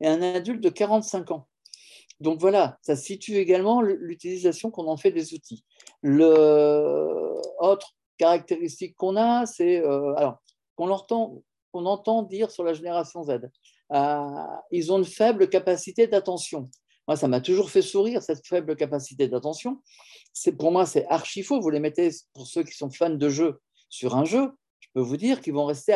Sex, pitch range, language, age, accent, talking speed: male, 145-200 Hz, French, 50-69, French, 175 wpm